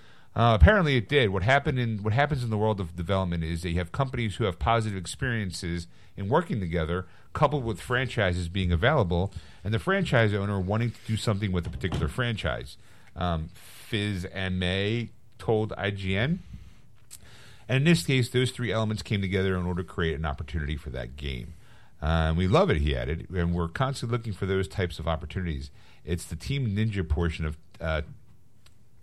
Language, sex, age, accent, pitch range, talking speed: English, male, 50-69, American, 85-115 Hz, 180 wpm